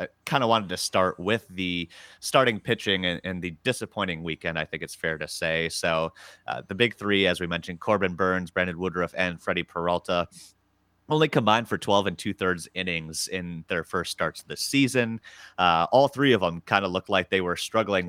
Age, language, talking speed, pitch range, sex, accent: 30-49, English, 205 wpm, 85-110 Hz, male, American